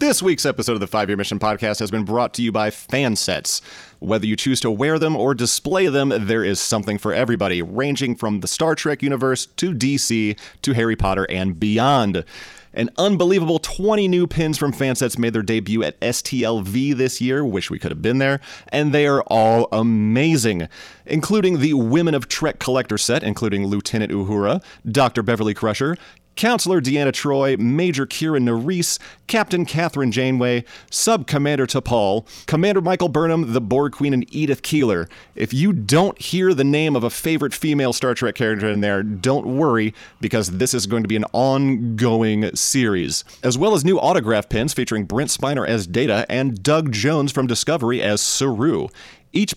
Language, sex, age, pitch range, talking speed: English, male, 30-49, 110-150 Hz, 175 wpm